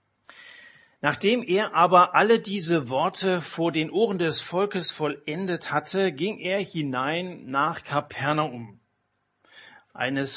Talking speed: 110 wpm